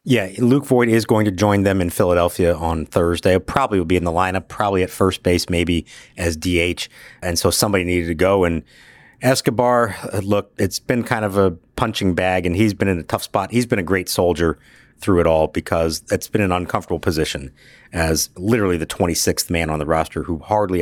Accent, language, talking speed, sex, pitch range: American, English, 210 wpm, male, 85-110 Hz